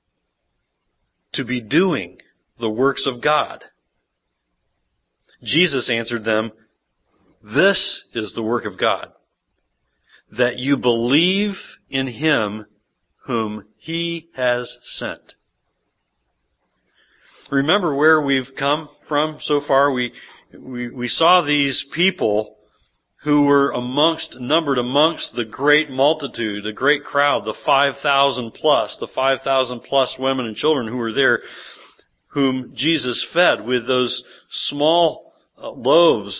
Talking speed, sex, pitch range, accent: 110 wpm, male, 120-155 Hz, American